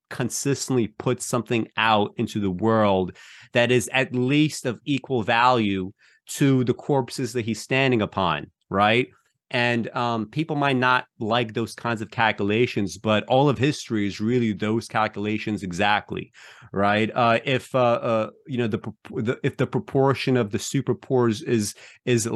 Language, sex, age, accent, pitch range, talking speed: English, male, 30-49, American, 105-125 Hz, 155 wpm